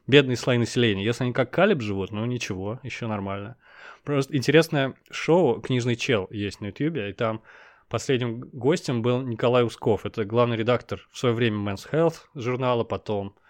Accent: native